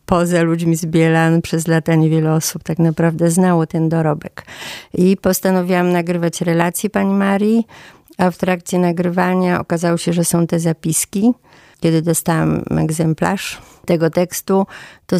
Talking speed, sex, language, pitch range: 140 wpm, female, Polish, 160-180 Hz